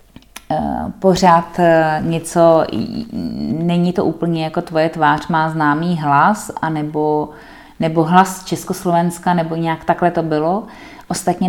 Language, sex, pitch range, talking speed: Czech, female, 160-200 Hz, 110 wpm